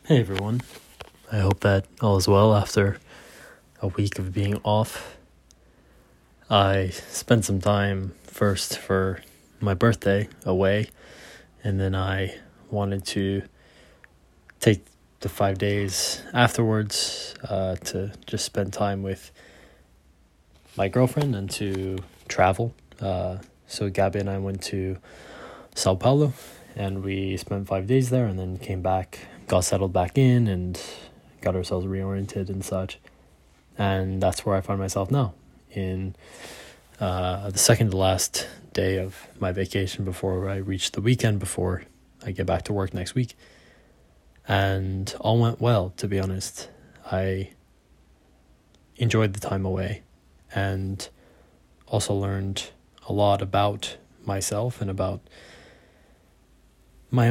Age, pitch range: 20-39, 95-105 Hz